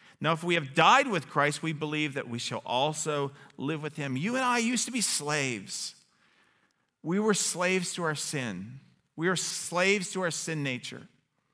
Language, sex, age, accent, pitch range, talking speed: English, male, 50-69, American, 135-195 Hz, 185 wpm